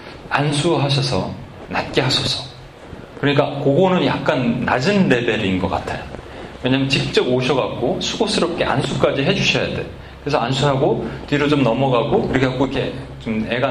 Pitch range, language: 125-160 Hz, Korean